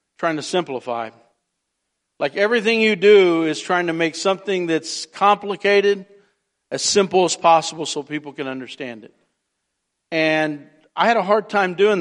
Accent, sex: American, male